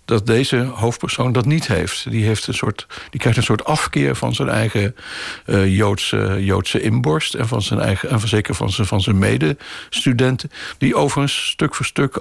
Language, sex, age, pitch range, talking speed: Dutch, male, 60-79, 100-120 Hz, 185 wpm